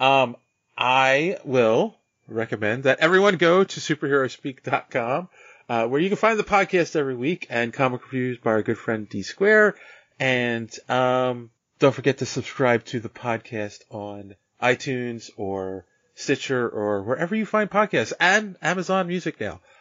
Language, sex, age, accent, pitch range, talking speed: English, male, 30-49, American, 110-140 Hz, 160 wpm